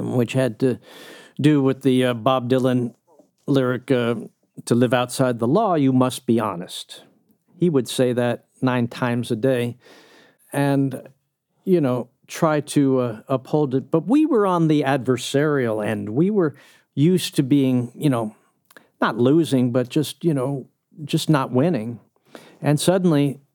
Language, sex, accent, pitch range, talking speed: English, male, American, 125-160 Hz, 155 wpm